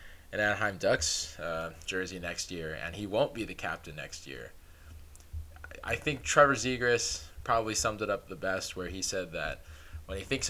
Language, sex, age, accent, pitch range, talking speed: English, male, 20-39, American, 80-110 Hz, 175 wpm